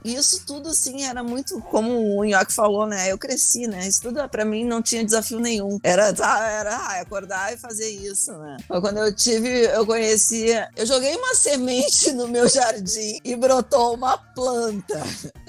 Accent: Brazilian